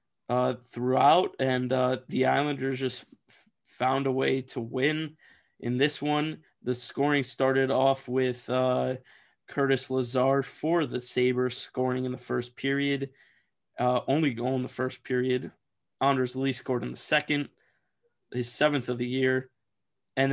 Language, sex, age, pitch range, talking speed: English, male, 20-39, 125-140 Hz, 150 wpm